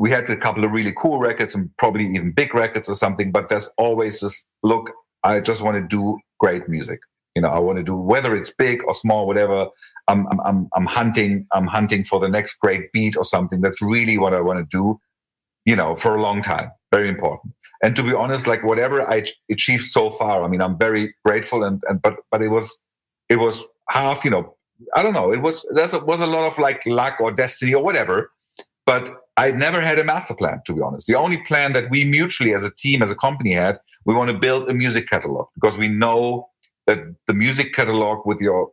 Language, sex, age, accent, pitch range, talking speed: English, male, 50-69, German, 105-140 Hz, 230 wpm